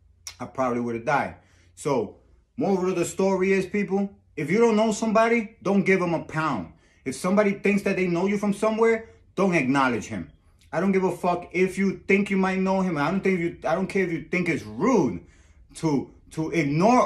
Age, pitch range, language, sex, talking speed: 30-49, 130-180 Hz, English, male, 215 wpm